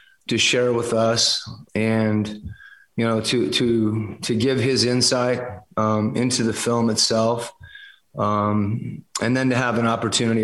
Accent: American